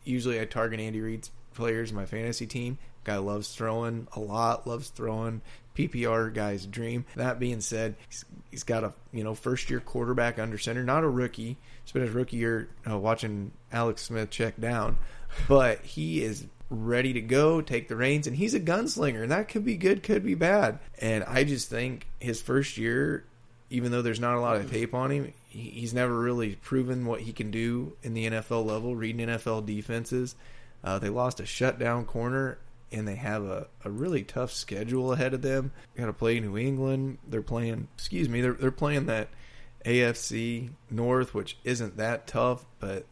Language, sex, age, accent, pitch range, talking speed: English, male, 20-39, American, 110-125 Hz, 190 wpm